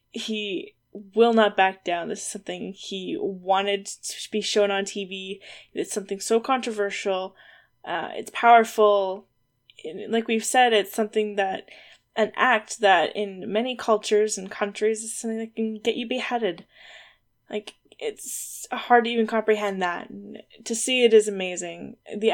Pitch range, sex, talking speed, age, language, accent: 195-225 Hz, female, 150 wpm, 10-29, English, American